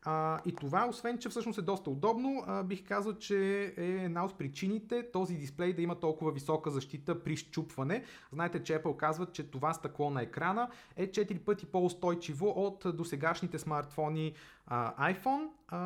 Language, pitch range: Bulgarian, 145-190 Hz